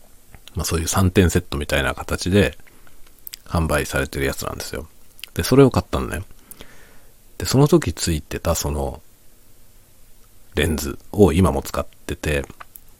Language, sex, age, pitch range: Japanese, male, 40-59, 75-100 Hz